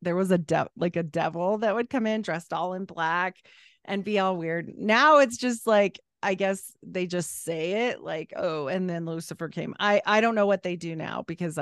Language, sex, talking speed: English, female, 225 wpm